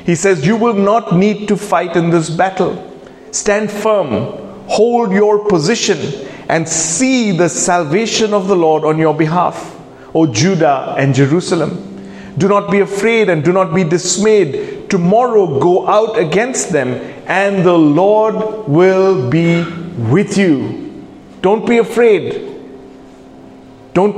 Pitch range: 140-195 Hz